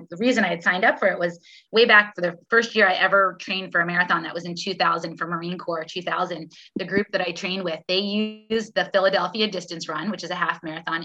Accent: American